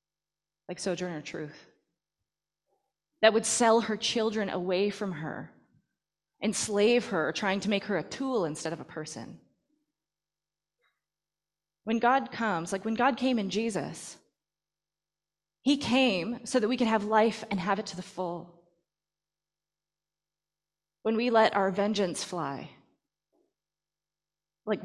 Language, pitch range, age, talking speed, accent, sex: English, 165-220 Hz, 20-39, 130 wpm, American, female